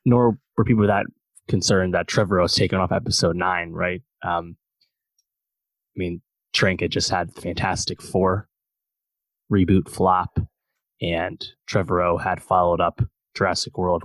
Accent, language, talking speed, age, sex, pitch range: American, English, 130 wpm, 20-39, male, 90-110 Hz